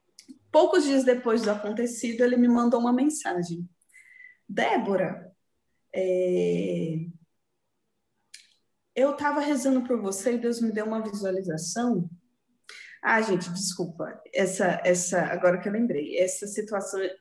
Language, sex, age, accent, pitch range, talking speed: Portuguese, female, 20-39, Brazilian, 190-250 Hz, 120 wpm